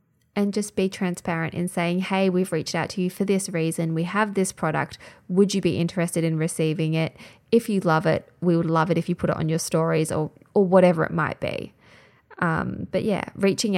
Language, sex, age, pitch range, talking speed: English, female, 20-39, 175-210 Hz, 220 wpm